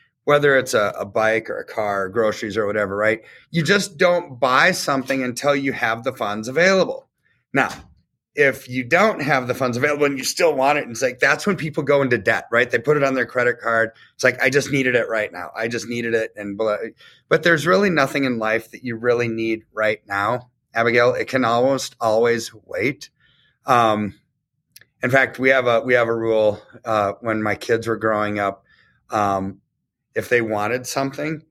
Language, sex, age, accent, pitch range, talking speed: English, male, 30-49, American, 110-140 Hz, 205 wpm